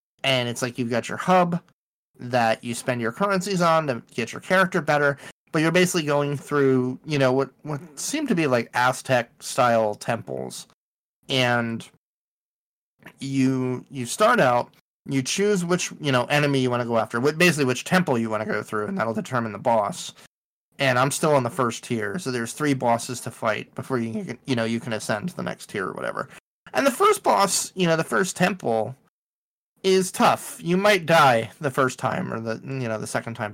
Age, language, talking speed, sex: 30-49, English, 200 wpm, male